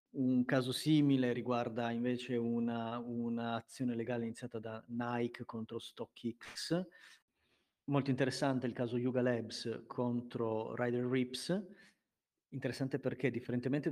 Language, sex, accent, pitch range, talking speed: Italian, male, native, 115-135 Hz, 110 wpm